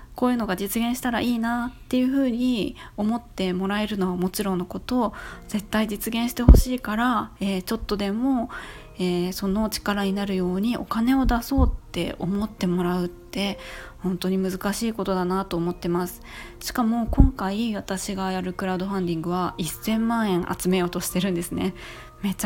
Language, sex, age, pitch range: Japanese, female, 20-39, 180-235 Hz